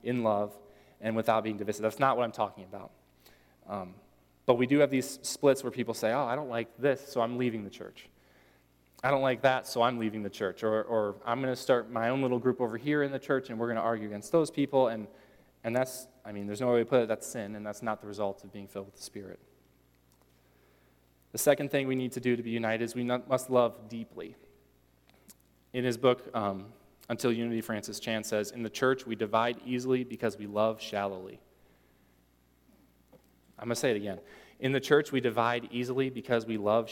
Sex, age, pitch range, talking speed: male, 20-39, 105-130 Hz, 225 wpm